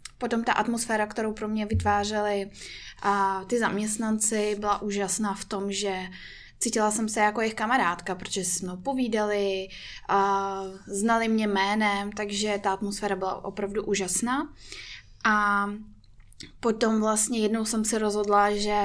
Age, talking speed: 20-39, 130 wpm